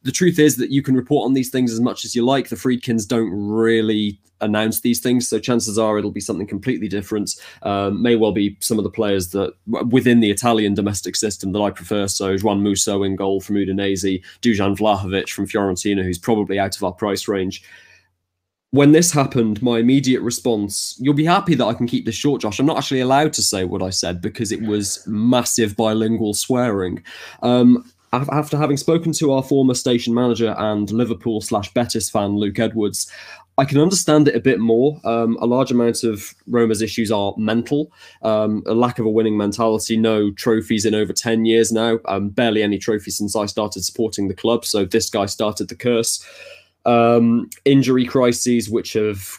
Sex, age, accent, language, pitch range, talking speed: male, 20-39, British, English, 105-120 Hz, 200 wpm